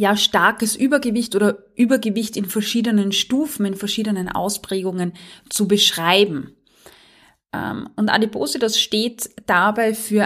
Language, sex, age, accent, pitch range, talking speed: German, female, 20-39, German, 190-220 Hz, 105 wpm